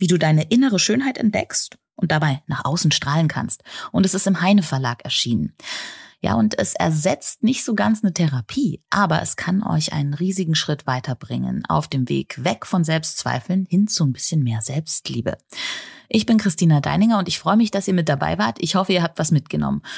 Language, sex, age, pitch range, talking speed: German, female, 30-49, 140-200 Hz, 200 wpm